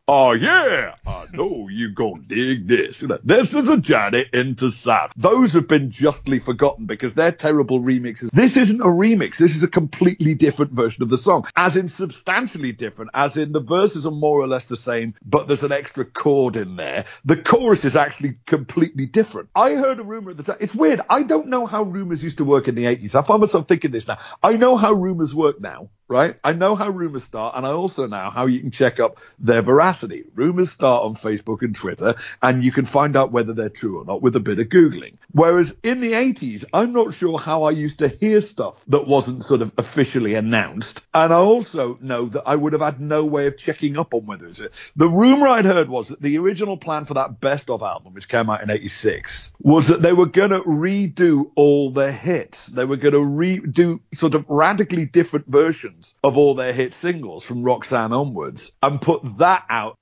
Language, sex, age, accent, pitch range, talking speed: English, male, 50-69, British, 130-175 Hz, 225 wpm